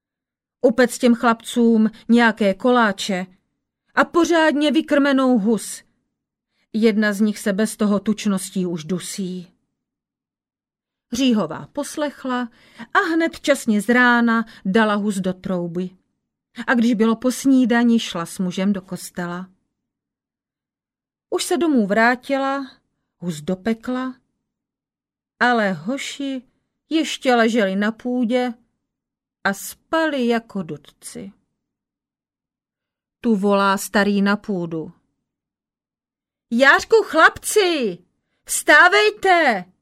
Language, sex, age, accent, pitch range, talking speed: Czech, female, 40-59, native, 210-290 Hz, 95 wpm